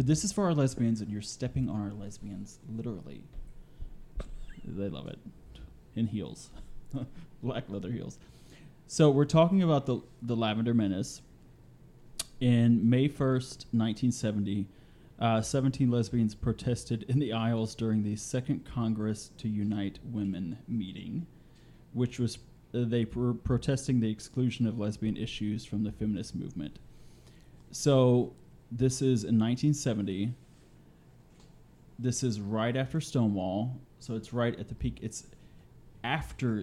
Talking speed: 130 wpm